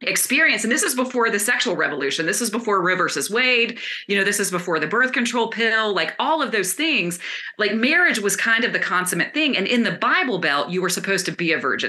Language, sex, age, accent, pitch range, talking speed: English, female, 30-49, American, 180-240 Hz, 240 wpm